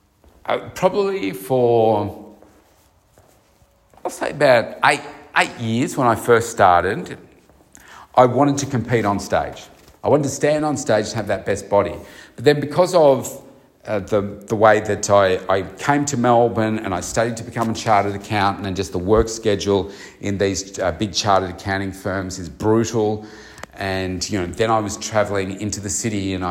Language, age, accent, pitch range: English, 40-59, Australian, 95-120 Hz